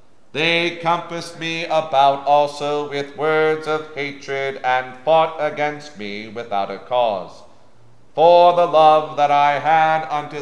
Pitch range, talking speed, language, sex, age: 120-150 Hz, 130 wpm, English, male, 40-59